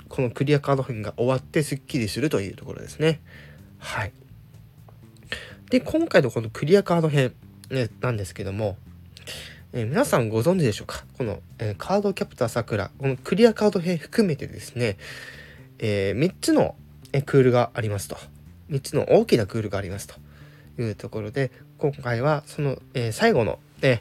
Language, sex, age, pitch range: Japanese, male, 20-39, 100-135 Hz